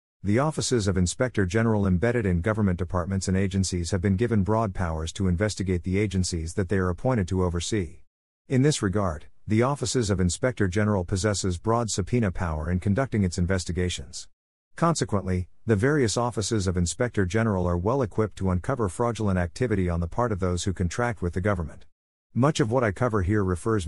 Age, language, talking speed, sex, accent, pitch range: 50-69, English, 185 wpm, male, American, 90-115 Hz